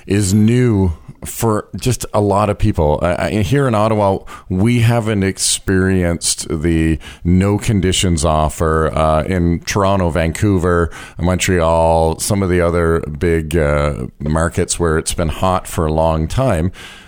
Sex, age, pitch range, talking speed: male, 40-59, 85-105 Hz, 135 wpm